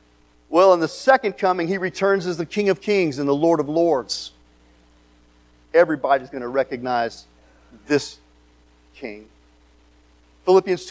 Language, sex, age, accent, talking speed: English, male, 40-59, American, 130 wpm